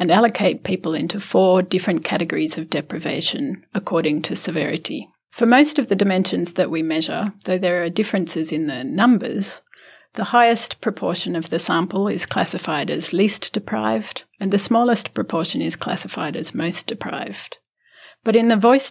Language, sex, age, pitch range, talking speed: English, female, 40-59, 170-220 Hz, 160 wpm